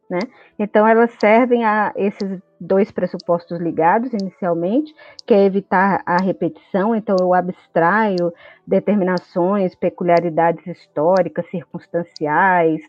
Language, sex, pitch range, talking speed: Portuguese, female, 180-240 Hz, 100 wpm